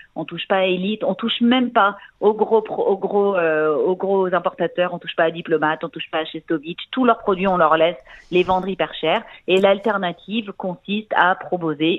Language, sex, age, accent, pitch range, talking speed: French, female, 40-59, French, 170-215 Hz, 230 wpm